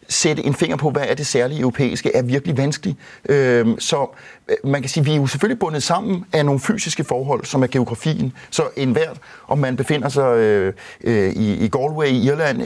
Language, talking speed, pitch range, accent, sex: Danish, 190 wpm, 120-155 Hz, native, male